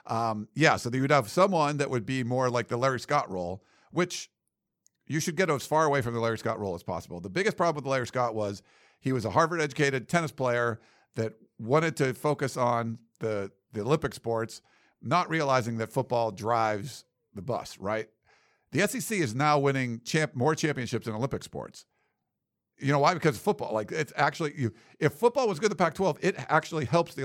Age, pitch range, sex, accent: 50-69, 115-155 Hz, male, American